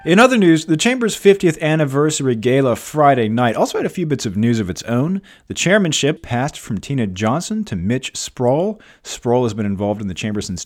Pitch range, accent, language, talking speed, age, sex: 105-145 Hz, American, English, 210 wpm, 40-59, male